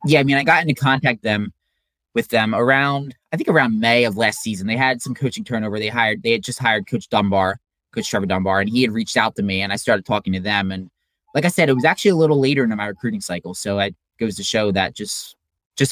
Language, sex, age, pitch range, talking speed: English, male, 20-39, 100-125 Hz, 260 wpm